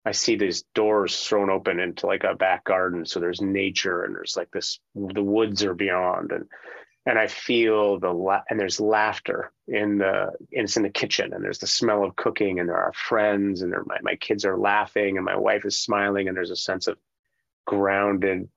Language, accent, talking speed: English, American, 215 wpm